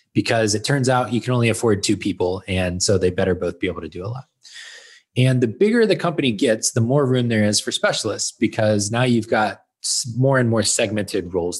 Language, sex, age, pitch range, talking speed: English, male, 20-39, 95-130 Hz, 220 wpm